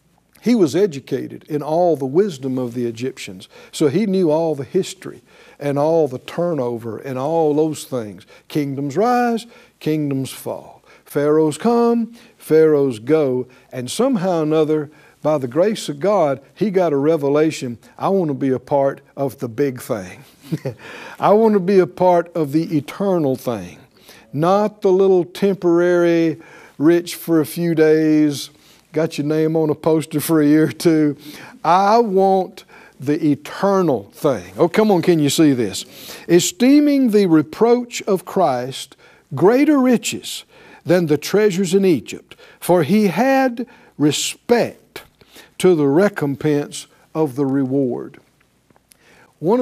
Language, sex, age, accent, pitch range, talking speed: English, male, 60-79, American, 140-190 Hz, 145 wpm